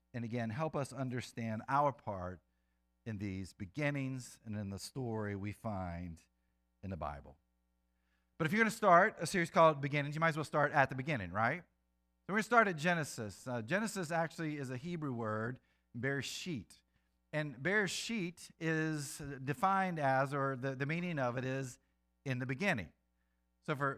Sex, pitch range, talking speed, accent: male, 115-175 Hz, 175 wpm, American